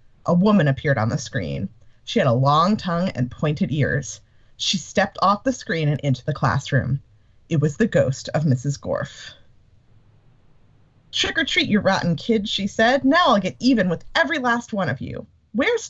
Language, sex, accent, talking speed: English, female, American, 185 wpm